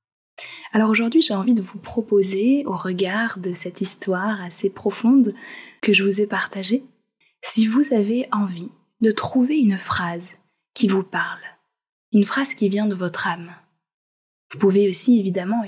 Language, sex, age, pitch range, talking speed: French, female, 20-39, 190-235 Hz, 155 wpm